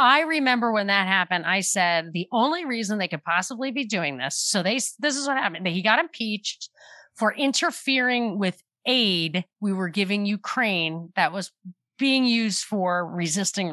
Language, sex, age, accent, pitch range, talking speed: English, female, 30-49, American, 180-240 Hz, 170 wpm